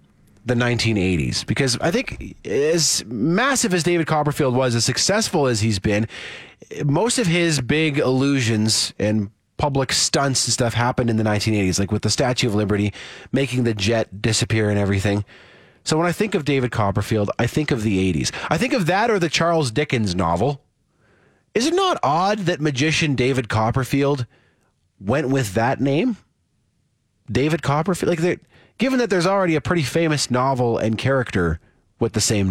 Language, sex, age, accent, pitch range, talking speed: English, male, 30-49, American, 110-155 Hz, 165 wpm